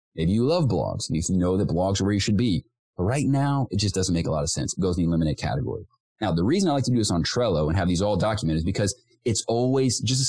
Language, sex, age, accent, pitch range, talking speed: English, male, 30-49, American, 85-120 Hz, 305 wpm